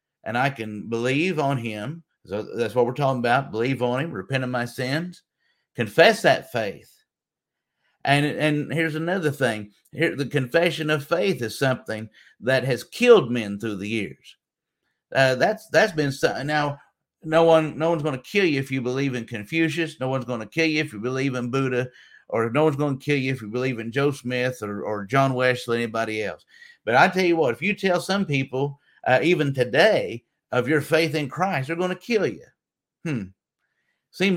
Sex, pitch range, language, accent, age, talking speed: male, 120-155 Hz, English, American, 50-69, 200 wpm